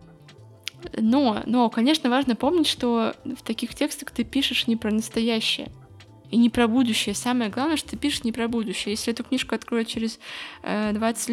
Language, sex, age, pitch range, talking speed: Russian, female, 20-39, 220-255 Hz, 170 wpm